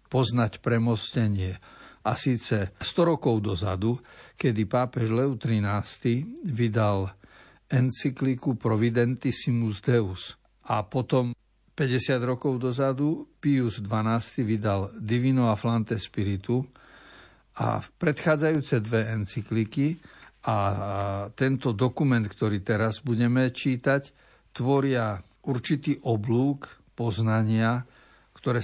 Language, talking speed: Slovak, 90 wpm